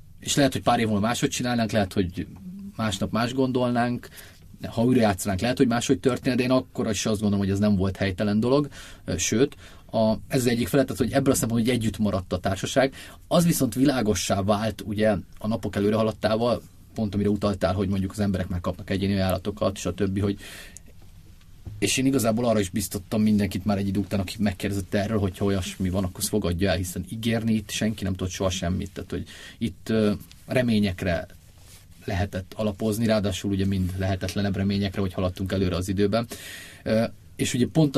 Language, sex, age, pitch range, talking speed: Hungarian, male, 30-49, 95-110 Hz, 185 wpm